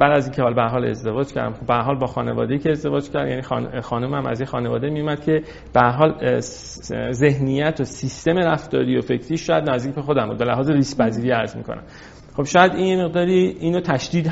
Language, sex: Persian, male